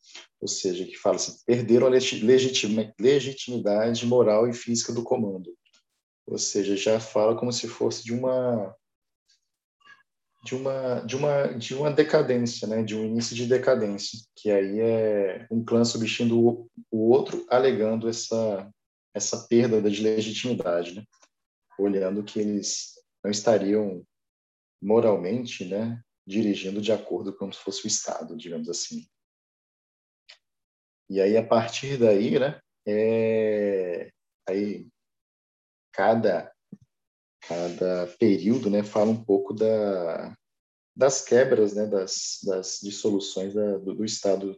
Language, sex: Portuguese, male